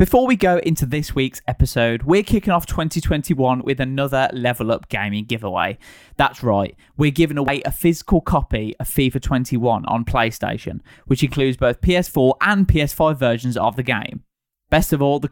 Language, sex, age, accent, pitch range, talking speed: English, male, 20-39, British, 120-160 Hz, 170 wpm